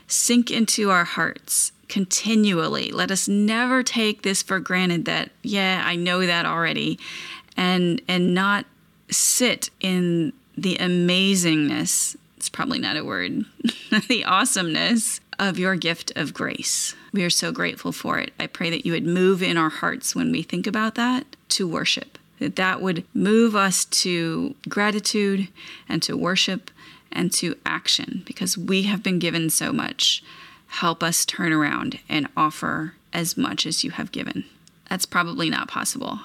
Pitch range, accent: 175-220 Hz, American